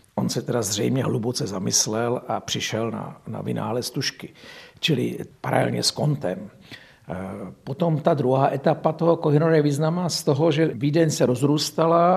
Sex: male